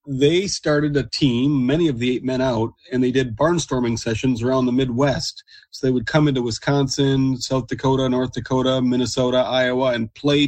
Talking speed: 185 wpm